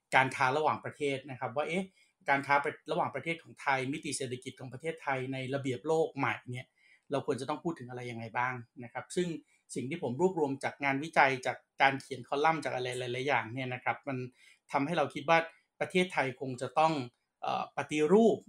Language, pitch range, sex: Thai, 125-150 Hz, male